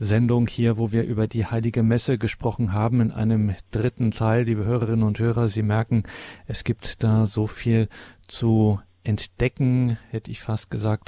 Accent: German